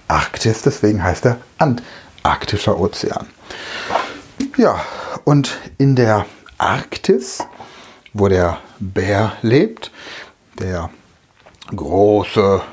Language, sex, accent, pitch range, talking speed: German, male, German, 105-150 Hz, 80 wpm